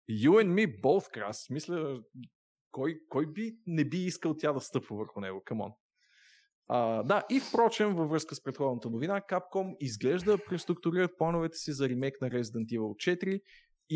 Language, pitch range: Bulgarian, 120-165 Hz